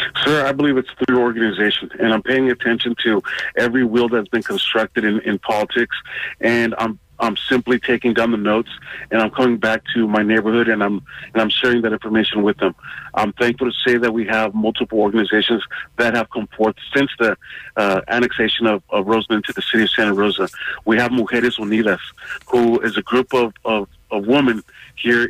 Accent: American